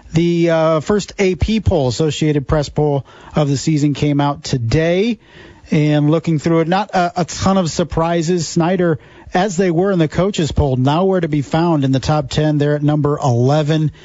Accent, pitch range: American, 135-160 Hz